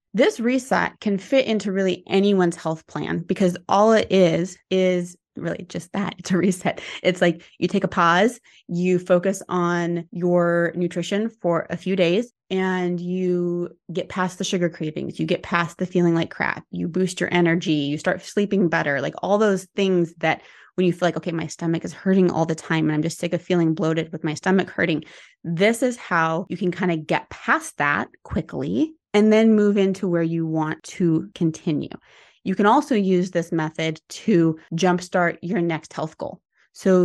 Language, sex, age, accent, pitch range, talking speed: English, female, 20-39, American, 170-195 Hz, 190 wpm